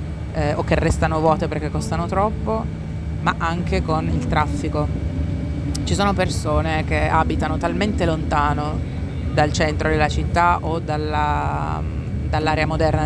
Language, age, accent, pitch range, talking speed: Italian, 30-49, native, 75-85 Hz, 120 wpm